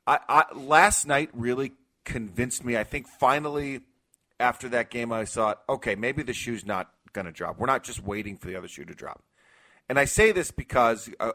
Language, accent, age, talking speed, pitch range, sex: English, American, 30-49, 200 wpm, 95-125 Hz, male